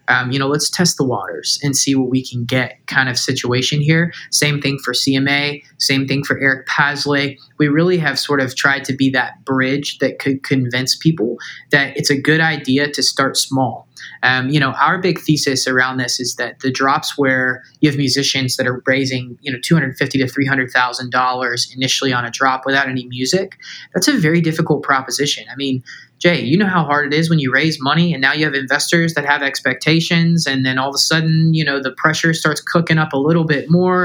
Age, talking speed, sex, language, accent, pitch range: 20-39, 220 wpm, male, English, American, 130-160 Hz